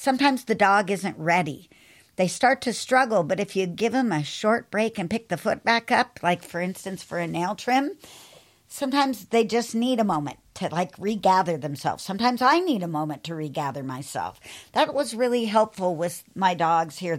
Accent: American